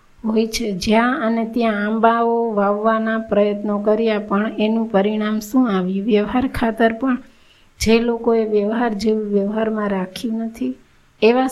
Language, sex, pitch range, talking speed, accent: Gujarati, female, 210-235 Hz, 130 wpm, native